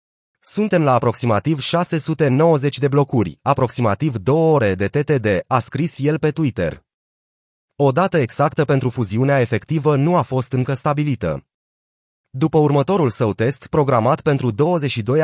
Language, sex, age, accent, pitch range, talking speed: Romanian, male, 30-49, native, 120-150 Hz, 135 wpm